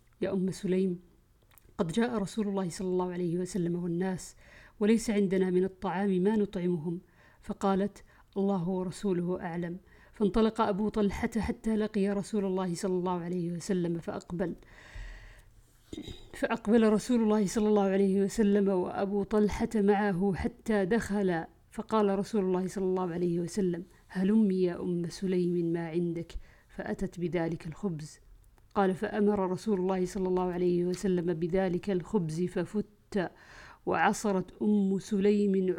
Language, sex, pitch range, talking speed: Arabic, female, 180-205 Hz, 125 wpm